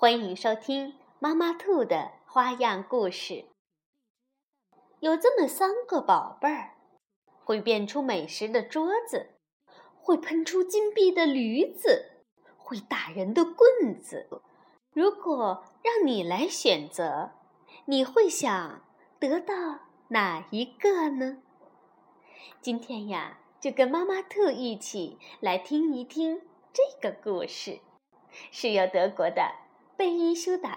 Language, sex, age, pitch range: Chinese, female, 20-39, 245-375 Hz